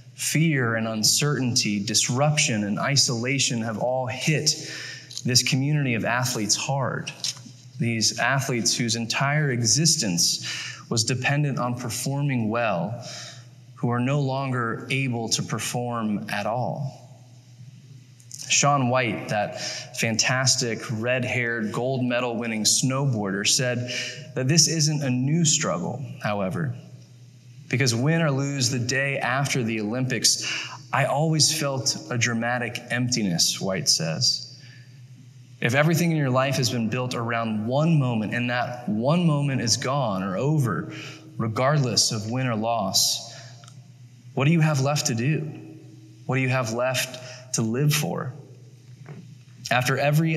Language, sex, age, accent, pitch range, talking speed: English, male, 20-39, American, 120-140 Hz, 125 wpm